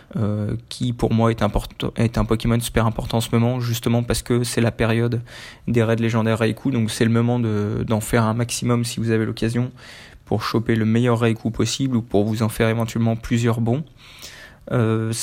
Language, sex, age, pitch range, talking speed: French, male, 20-39, 110-120 Hz, 205 wpm